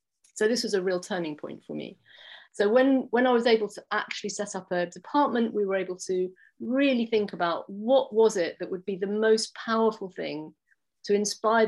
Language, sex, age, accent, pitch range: Japanese, female, 40-59, British, 175-220 Hz